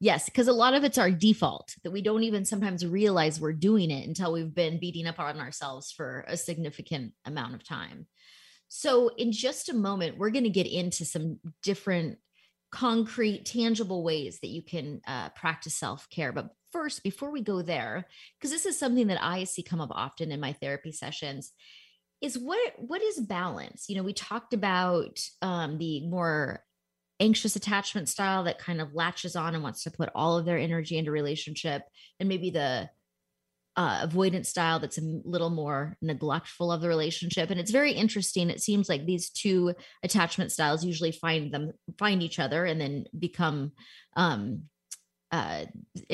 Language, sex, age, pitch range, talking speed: English, female, 30-49, 155-200 Hz, 180 wpm